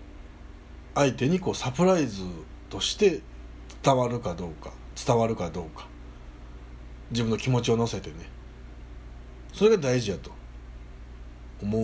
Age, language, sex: 60-79, Japanese, male